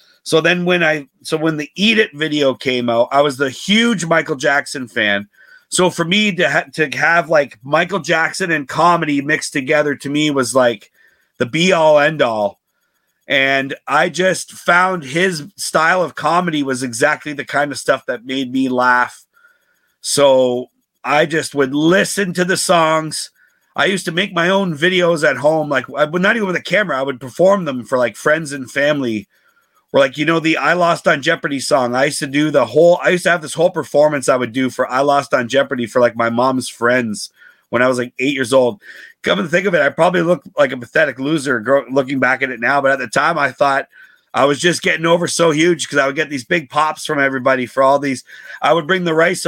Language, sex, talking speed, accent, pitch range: English, male, 220 wpm, American, 135-170 Hz